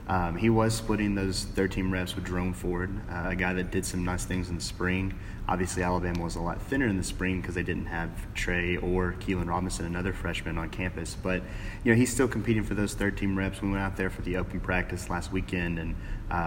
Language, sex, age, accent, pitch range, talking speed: English, male, 30-49, American, 90-100 Hz, 235 wpm